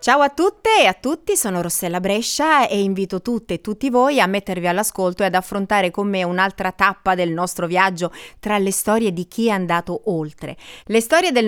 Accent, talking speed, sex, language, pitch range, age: native, 205 wpm, female, Italian, 180-235 Hz, 30-49